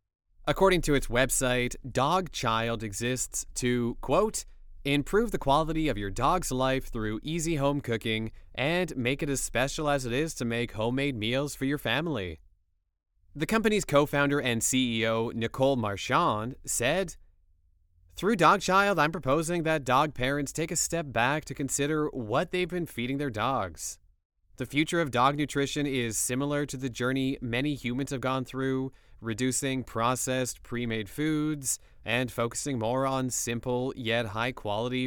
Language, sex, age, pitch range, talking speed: English, male, 20-39, 115-145 Hz, 150 wpm